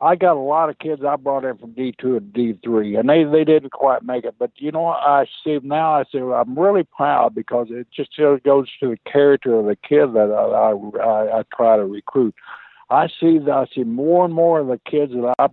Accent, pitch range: American, 115-145 Hz